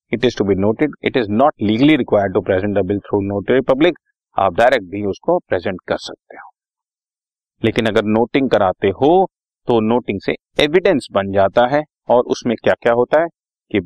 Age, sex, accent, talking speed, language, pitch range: 40-59, male, native, 175 wpm, Hindi, 115-150 Hz